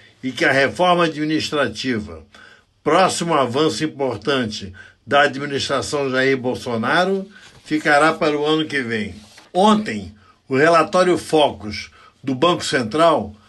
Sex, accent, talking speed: male, Brazilian, 110 wpm